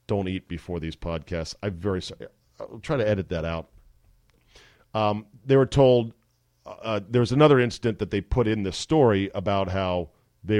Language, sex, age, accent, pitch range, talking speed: English, male, 40-59, American, 95-130 Hz, 175 wpm